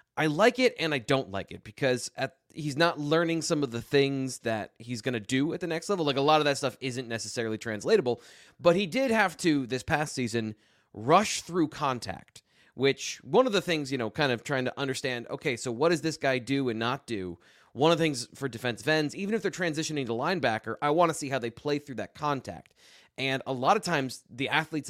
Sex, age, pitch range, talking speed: male, 30-49, 120-160 Hz, 235 wpm